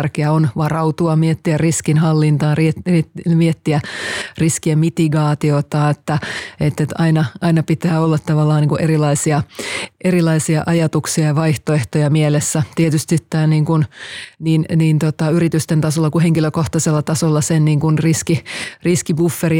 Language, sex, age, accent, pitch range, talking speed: Finnish, female, 30-49, native, 155-170 Hz, 120 wpm